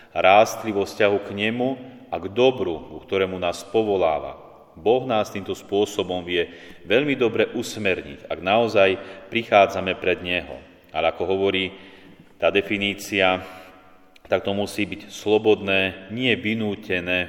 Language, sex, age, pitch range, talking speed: Slovak, male, 30-49, 90-105 Hz, 120 wpm